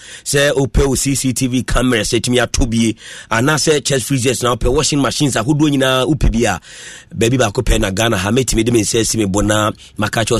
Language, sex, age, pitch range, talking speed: English, male, 30-49, 115-155 Hz, 180 wpm